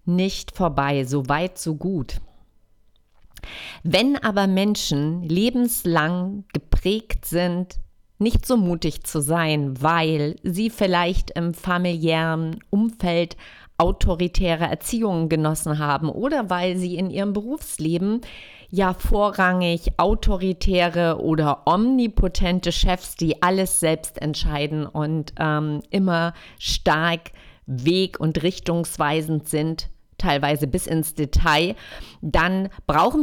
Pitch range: 160-195 Hz